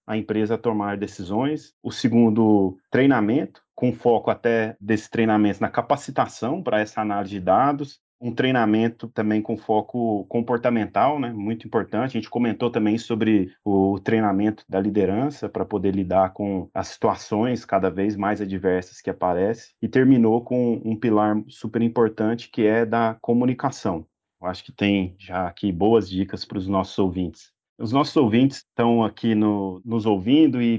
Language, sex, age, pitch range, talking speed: Portuguese, male, 30-49, 105-125 Hz, 160 wpm